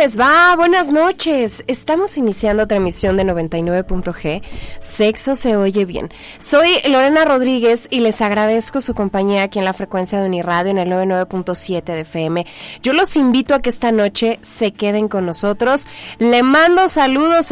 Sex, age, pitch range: female, 20-39, 185-245 Hz